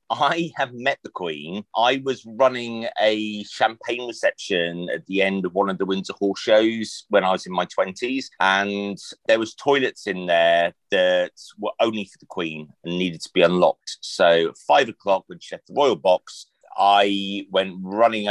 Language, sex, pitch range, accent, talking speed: English, male, 90-115 Hz, British, 185 wpm